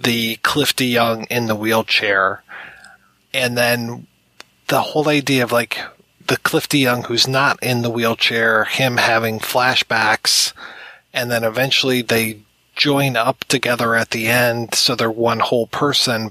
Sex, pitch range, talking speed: male, 115-145 Hz, 145 wpm